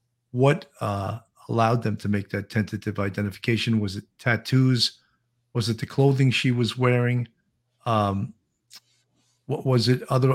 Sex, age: male, 50-69